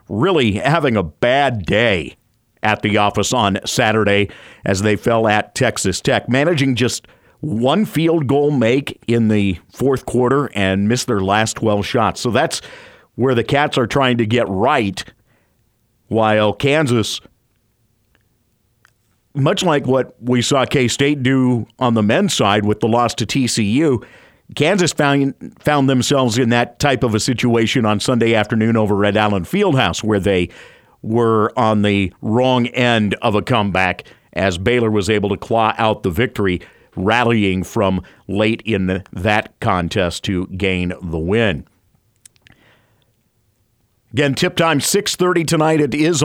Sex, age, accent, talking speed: male, 50-69, American, 150 wpm